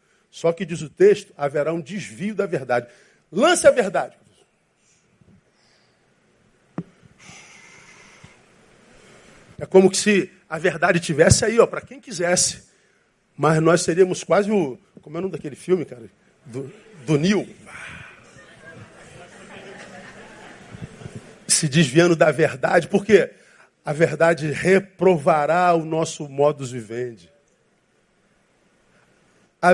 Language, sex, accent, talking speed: Portuguese, male, Brazilian, 110 wpm